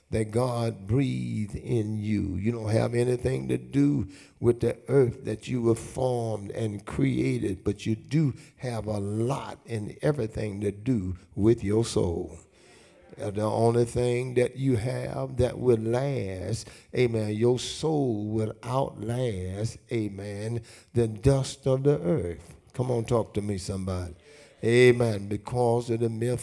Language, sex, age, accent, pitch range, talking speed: English, male, 60-79, American, 105-130 Hz, 145 wpm